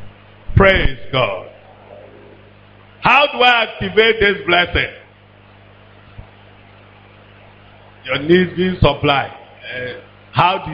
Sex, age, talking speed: male, 50-69, 85 wpm